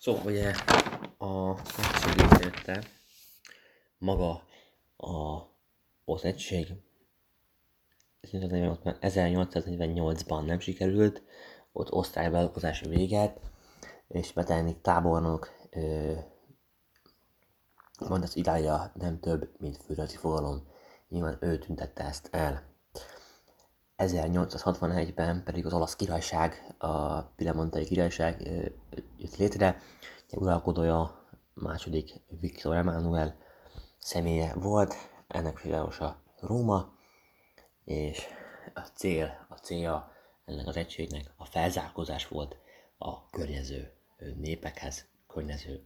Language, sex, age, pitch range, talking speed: Hungarian, male, 30-49, 80-95 Hz, 90 wpm